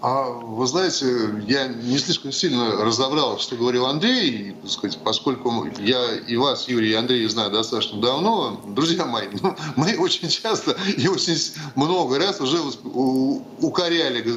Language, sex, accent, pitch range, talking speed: Russian, male, native, 115-160 Hz, 140 wpm